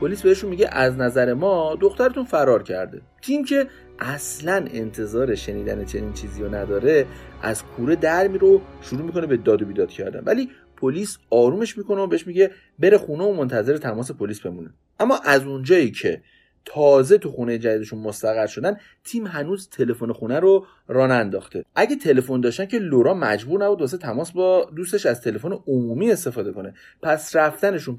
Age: 30-49